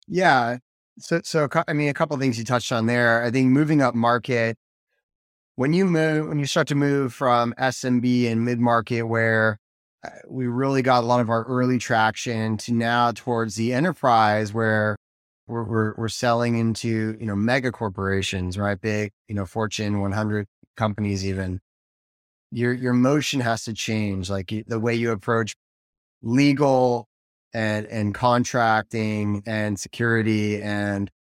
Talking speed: 155 wpm